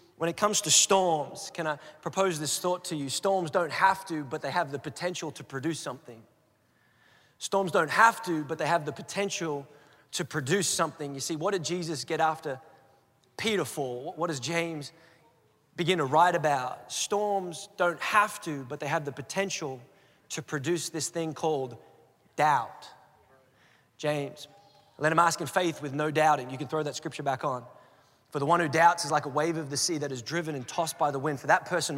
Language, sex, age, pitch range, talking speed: English, male, 20-39, 145-180 Hz, 200 wpm